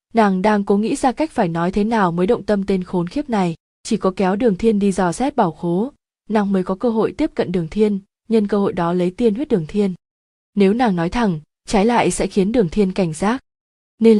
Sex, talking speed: female, 245 wpm